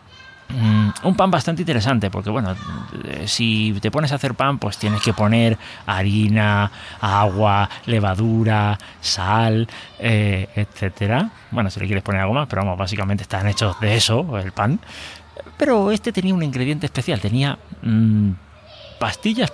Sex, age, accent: male, 30-49, Spanish